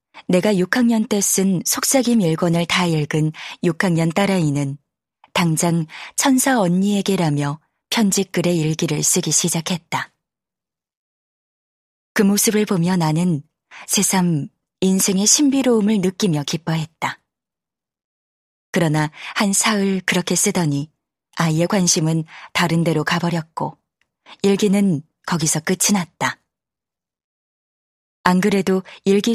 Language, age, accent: Korean, 20-39, native